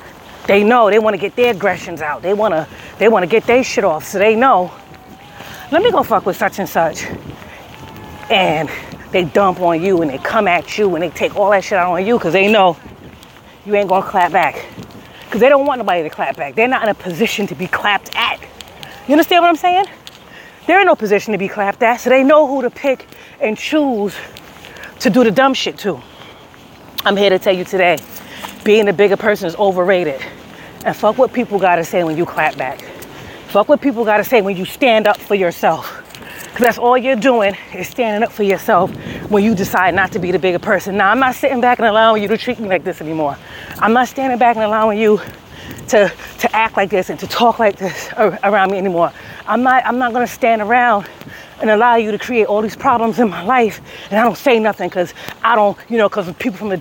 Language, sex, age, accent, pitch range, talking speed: English, female, 30-49, American, 195-240 Hz, 230 wpm